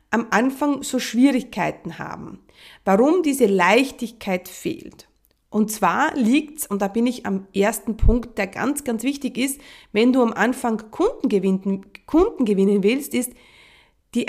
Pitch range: 205-275 Hz